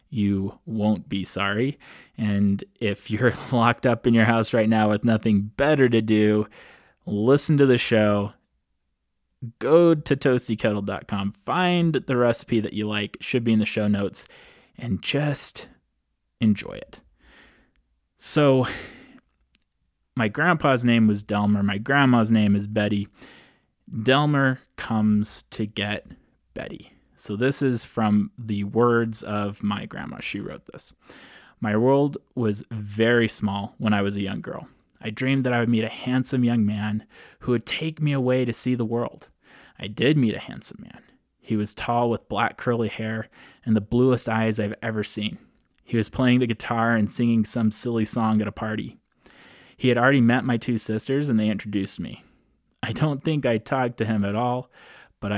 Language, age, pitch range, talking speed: English, 20-39, 105-125 Hz, 165 wpm